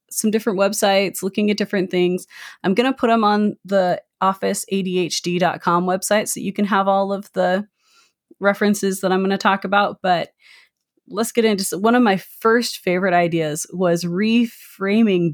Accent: American